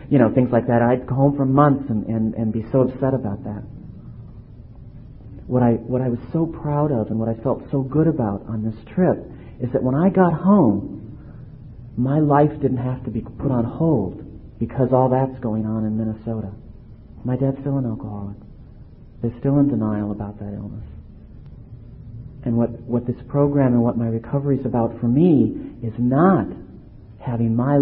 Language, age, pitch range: English, 40-59, 110-135 Hz